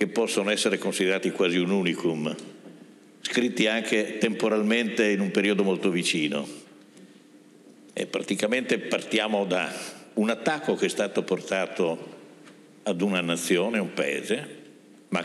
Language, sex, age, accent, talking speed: Italian, male, 60-79, native, 120 wpm